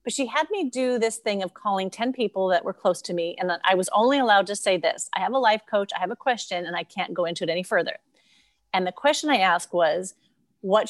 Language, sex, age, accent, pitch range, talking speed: English, female, 30-49, American, 190-245 Hz, 270 wpm